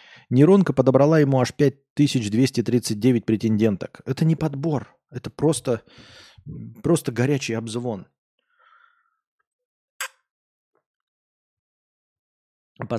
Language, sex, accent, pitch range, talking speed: Russian, male, native, 105-140 Hz, 70 wpm